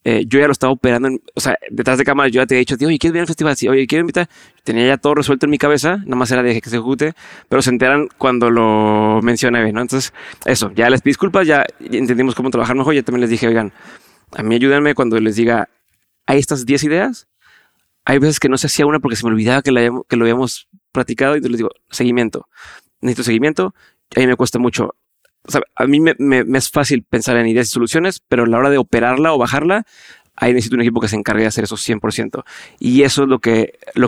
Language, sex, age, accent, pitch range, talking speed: Spanish, male, 20-39, Mexican, 115-145 Hz, 255 wpm